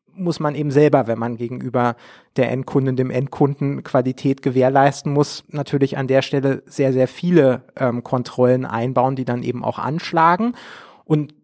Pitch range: 130-165 Hz